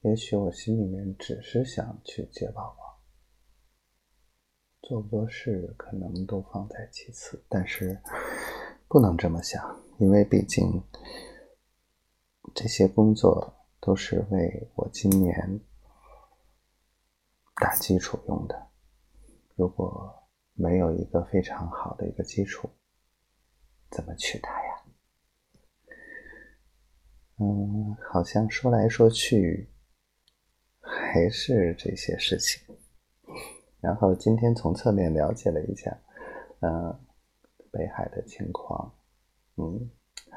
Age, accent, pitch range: 30-49, native, 85-105 Hz